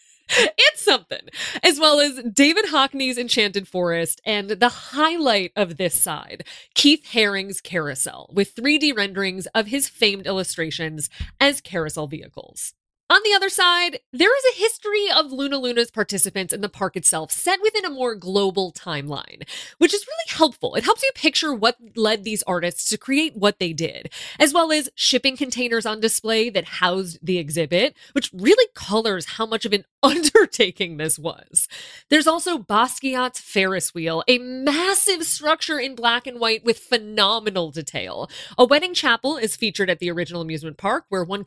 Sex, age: female, 20-39